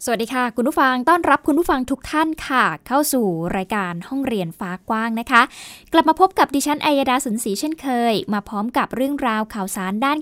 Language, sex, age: Thai, female, 10-29